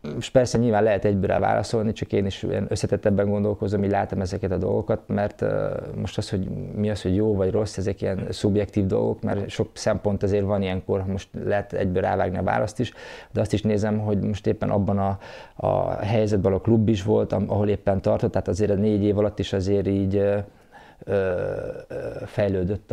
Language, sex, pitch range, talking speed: Hungarian, male, 100-110 Hz, 190 wpm